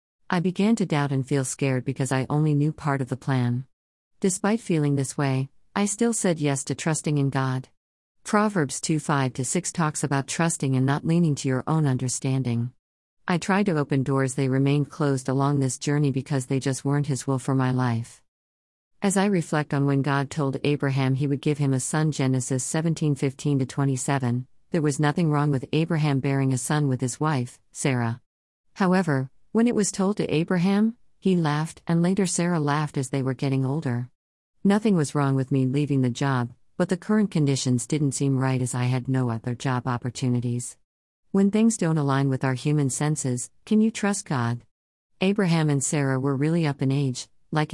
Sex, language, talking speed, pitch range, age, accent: female, English, 190 wpm, 130-155 Hz, 50-69, American